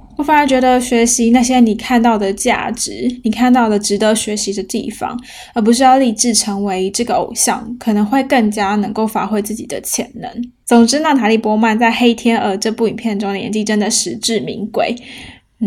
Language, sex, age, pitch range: Chinese, female, 10-29, 210-245 Hz